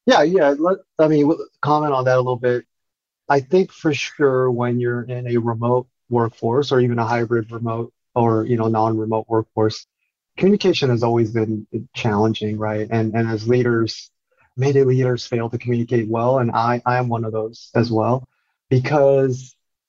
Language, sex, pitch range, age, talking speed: English, male, 115-130 Hz, 30-49, 170 wpm